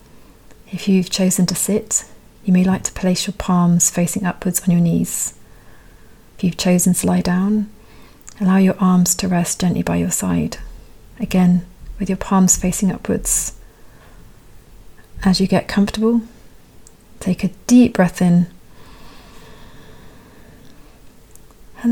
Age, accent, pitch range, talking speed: 40-59, British, 180-195 Hz, 130 wpm